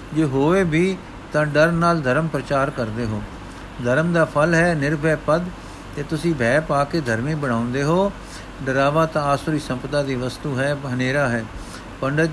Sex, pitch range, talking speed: male, 130-165 Hz, 165 wpm